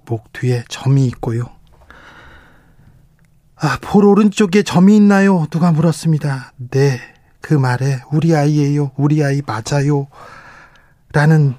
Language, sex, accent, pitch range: Korean, male, native, 130-155 Hz